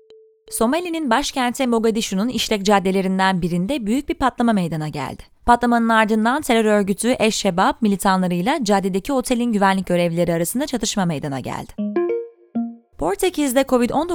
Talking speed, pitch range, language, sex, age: 115 wpm, 180-245 Hz, Turkish, female, 20-39